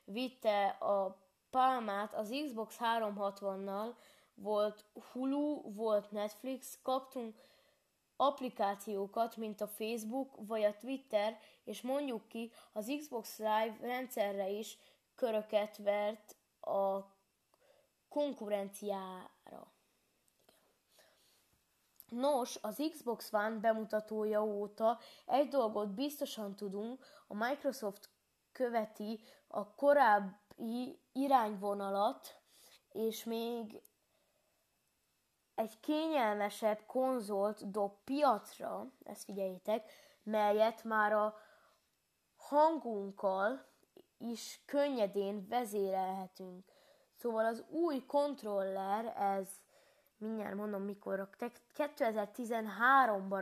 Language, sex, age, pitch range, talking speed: Hungarian, female, 20-39, 205-255 Hz, 80 wpm